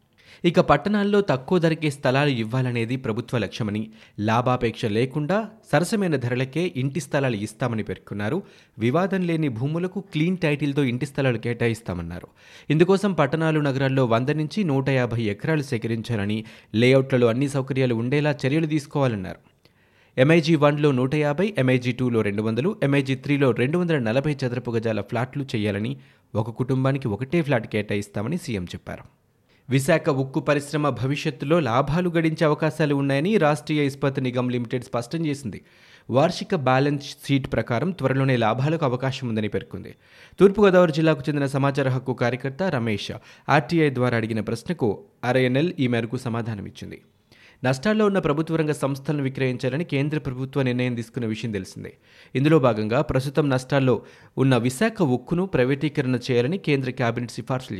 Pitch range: 120-155 Hz